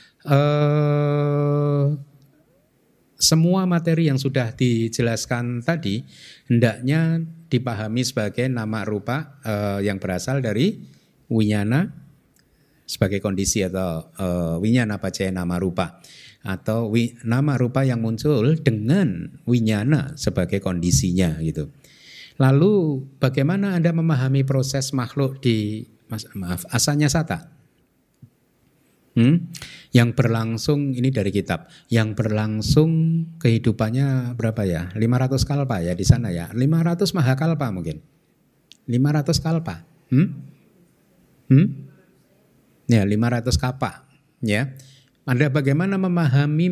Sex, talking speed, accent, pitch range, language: male, 100 wpm, native, 115-150 Hz, Indonesian